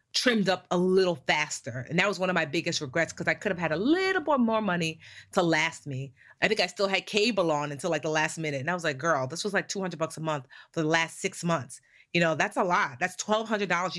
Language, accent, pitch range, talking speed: English, American, 150-190 Hz, 265 wpm